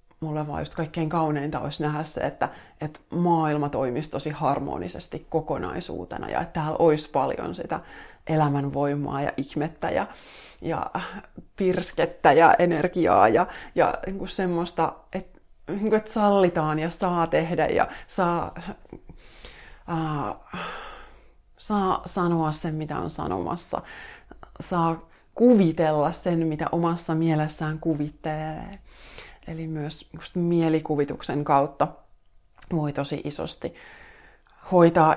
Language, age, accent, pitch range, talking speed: Finnish, 20-39, native, 155-175 Hz, 105 wpm